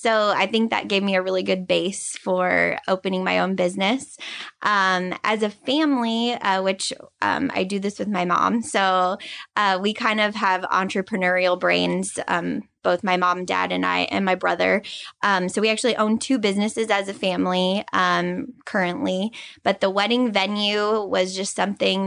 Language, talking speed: English, 175 wpm